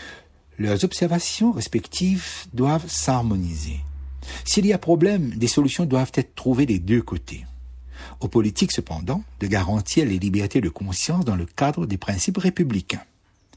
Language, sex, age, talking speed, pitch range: French, male, 60-79, 140 wpm, 95-150 Hz